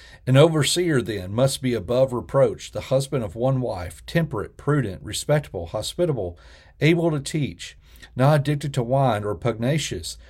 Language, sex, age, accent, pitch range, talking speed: English, male, 40-59, American, 105-140 Hz, 145 wpm